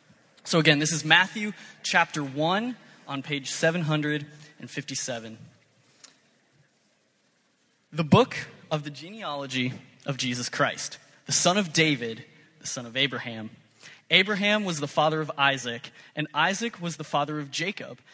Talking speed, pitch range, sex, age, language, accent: 130 wpm, 140-175 Hz, male, 20-39, English, American